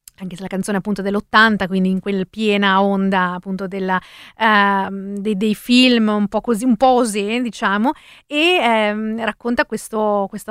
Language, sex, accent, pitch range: Italian, female, native, 205-240 Hz